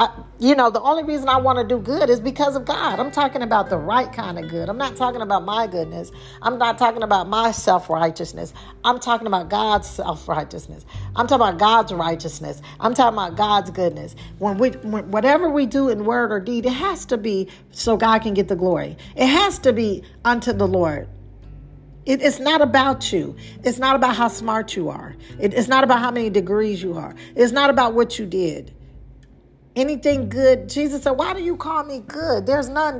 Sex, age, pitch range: female, 50-69, 200-265 Hz